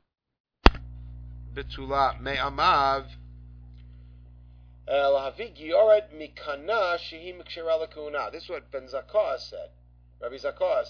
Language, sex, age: English, male, 50-69